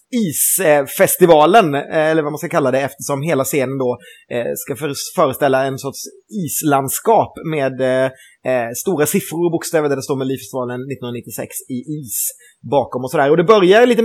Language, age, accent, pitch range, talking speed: Swedish, 30-49, native, 135-195 Hz, 155 wpm